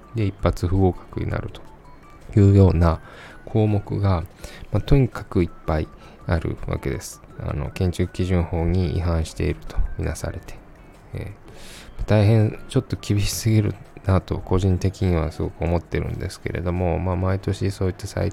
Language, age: Japanese, 20-39